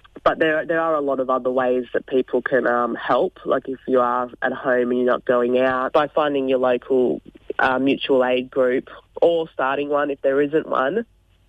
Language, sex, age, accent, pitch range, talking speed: English, female, 20-39, Australian, 125-155 Hz, 210 wpm